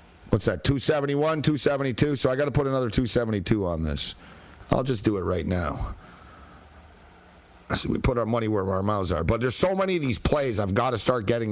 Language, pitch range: English, 85-115 Hz